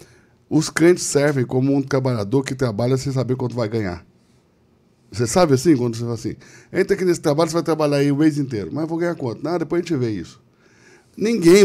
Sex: male